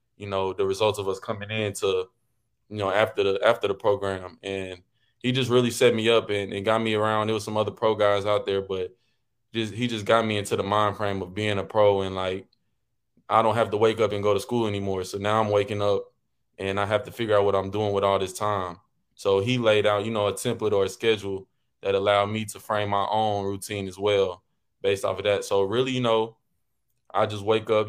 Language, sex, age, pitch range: English, male, 20-39, 100-110 Hz